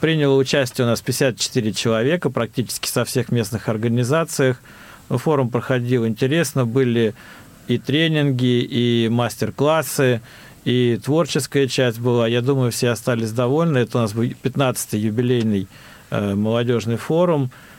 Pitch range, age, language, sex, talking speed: 115-140 Hz, 40-59, Russian, male, 125 wpm